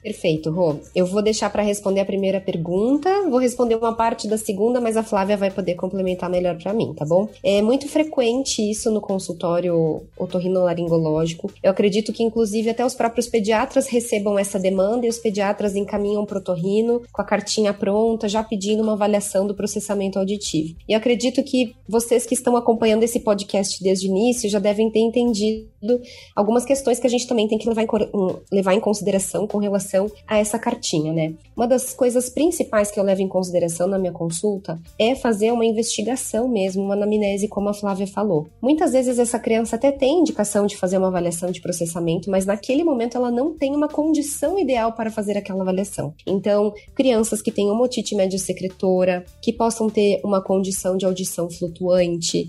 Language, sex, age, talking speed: Portuguese, female, 20-39, 185 wpm